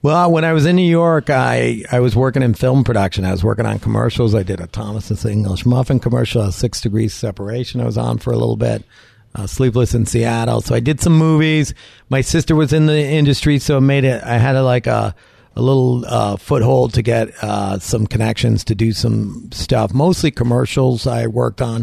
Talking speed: 215 wpm